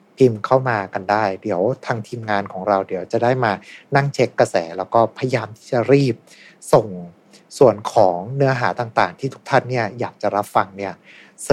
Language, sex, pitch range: Thai, male, 105-135 Hz